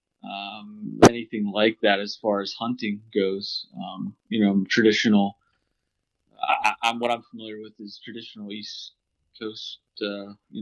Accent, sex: American, male